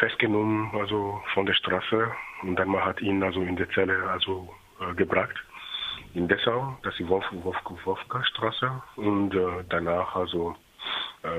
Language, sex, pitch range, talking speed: German, male, 80-95 Hz, 140 wpm